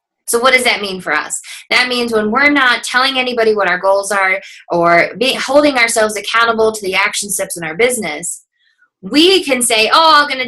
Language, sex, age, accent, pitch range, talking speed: English, female, 20-39, American, 210-285 Hz, 205 wpm